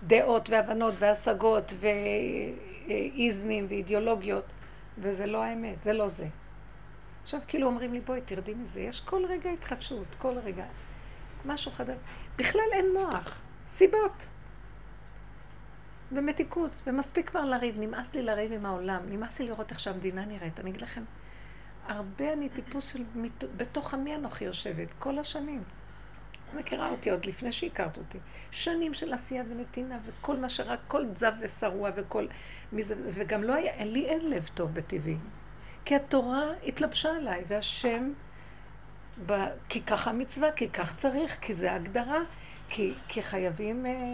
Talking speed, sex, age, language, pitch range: 140 wpm, female, 60-79, Hebrew, 210-280 Hz